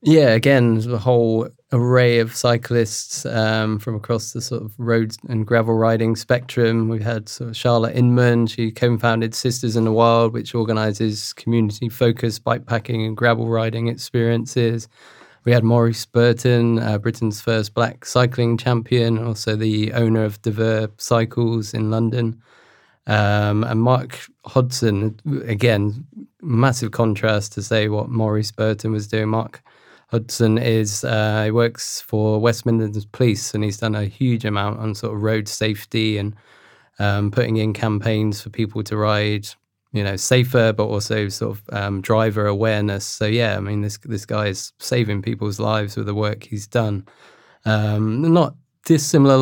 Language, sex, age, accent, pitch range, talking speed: English, male, 20-39, British, 110-120 Hz, 155 wpm